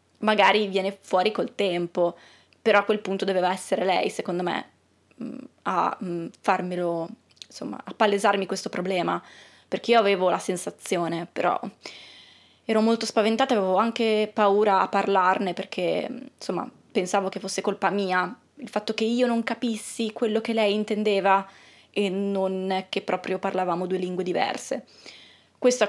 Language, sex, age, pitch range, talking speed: Italian, female, 20-39, 185-220 Hz, 145 wpm